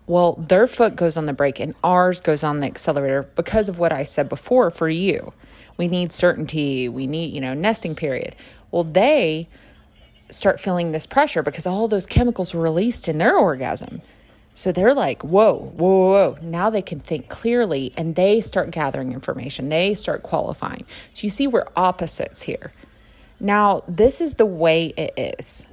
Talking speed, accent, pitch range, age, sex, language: 180 wpm, American, 160-220 Hz, 30-49, female, English